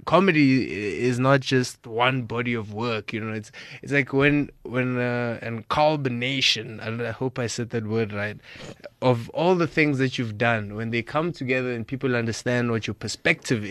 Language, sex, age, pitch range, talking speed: English, male, 20-39, 115-150 Hz, 190 wpm